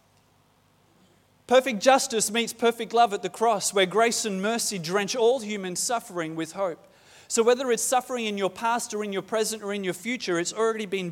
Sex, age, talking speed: male, 30-49, 195 wpm